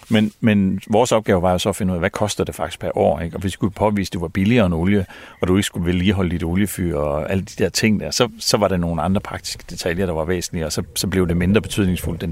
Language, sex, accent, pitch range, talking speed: Danish, male, native, 90-105 Hz, 295 wpm